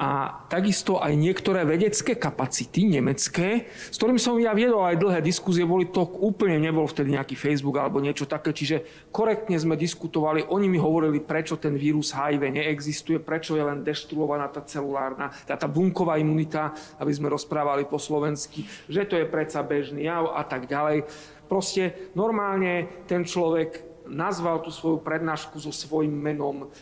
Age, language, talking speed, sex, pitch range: 40-59, Slovak, 160 wpm, male, 145-170 Hz